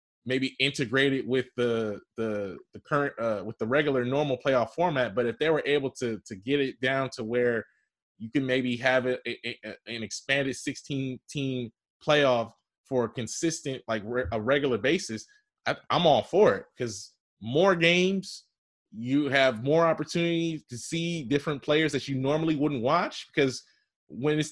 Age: 20-39